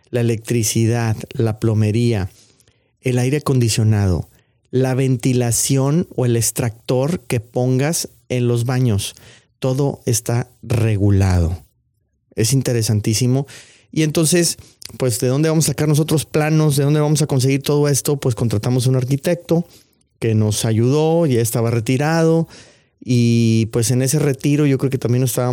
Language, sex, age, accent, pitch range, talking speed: Spanish, male, 30-49, Mexican, 115-135 Hz, 145 wpm